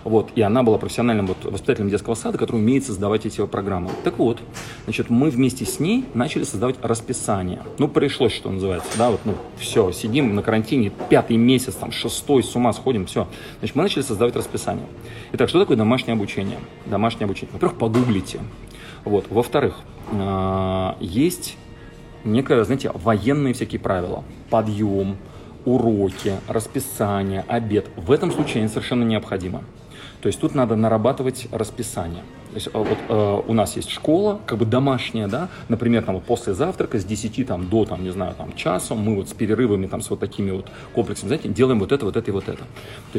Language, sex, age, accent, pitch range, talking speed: Russian, male, 30-49, native, 100-125 Hz, 170 wpm